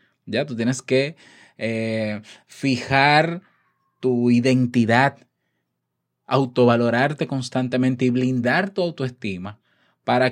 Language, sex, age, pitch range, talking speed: Spanish, male, 20-39, 115-145 Hz, 85 wpm